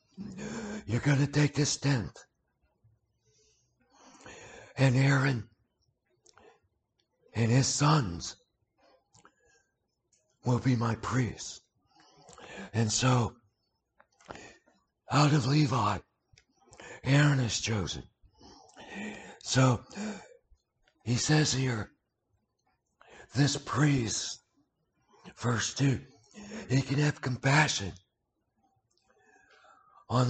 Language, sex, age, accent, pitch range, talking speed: English, male, 60-79, American, 115-150 Hz, 70 wpm